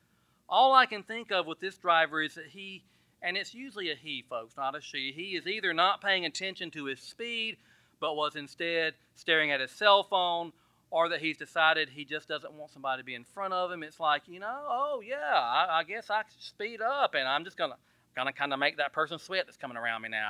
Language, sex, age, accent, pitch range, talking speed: English, male, 40-59, American, 135-190 Hz, 240 wpm